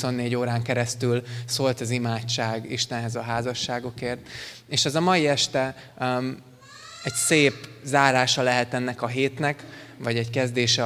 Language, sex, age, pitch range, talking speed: Hungarian, male, 20-39, 120-130 Hz, 140 wpm